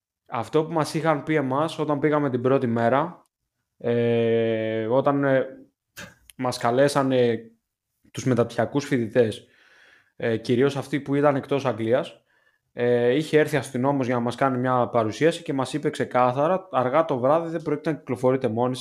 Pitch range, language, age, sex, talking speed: 120-150 Hz, Greek, 20-39, male, 155 wpm